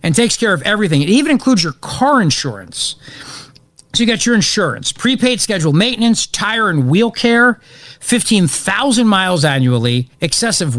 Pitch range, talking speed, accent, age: 140-200 Hz, 150 wpm, American, 50-69